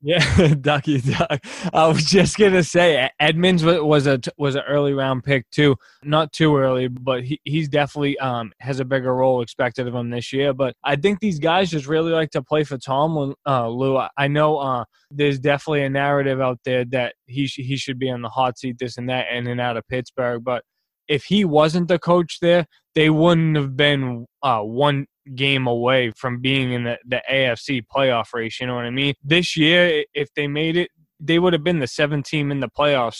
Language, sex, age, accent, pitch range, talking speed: English, male, 20-39, American, 130-155 Hz, 215 wpm